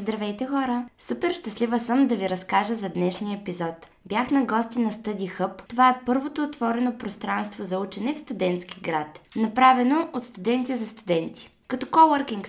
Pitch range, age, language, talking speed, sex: 205-255 Hz, 20-39, Bulgarian, 160 wpm, female